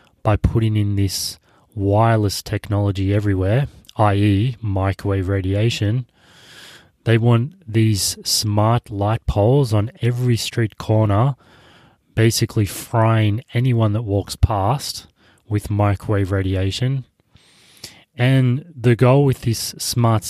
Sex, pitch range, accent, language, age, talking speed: male, 100-115 Hz, Australian, English, 20-39, 105 wpm